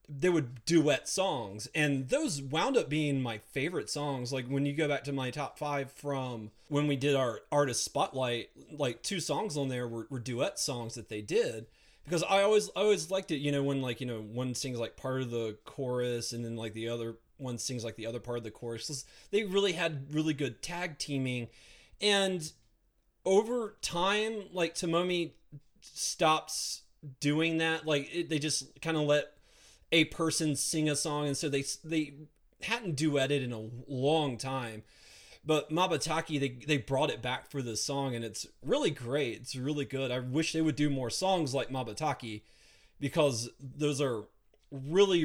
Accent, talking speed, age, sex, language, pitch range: American, 185 wpm, 30-49, male, English, 125-155 Hz